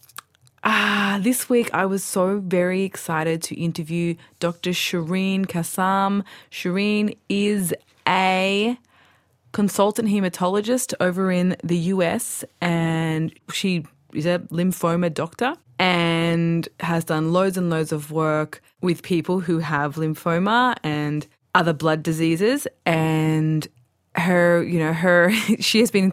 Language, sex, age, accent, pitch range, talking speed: English, female, 20-39, Australian, 160-195 Hz, 120 wpm